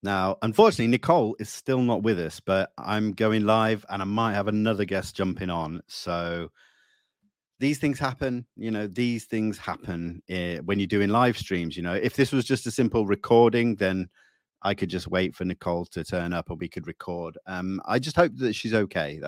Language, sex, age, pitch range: English, male, 30-49, 90-110 Hz